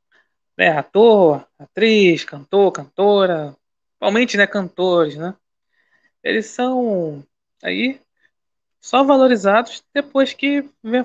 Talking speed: 80 wpm